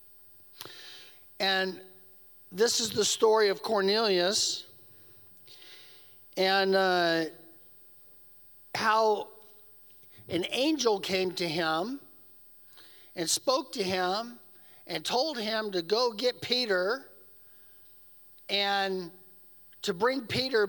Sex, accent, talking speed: male, American, 85 wpm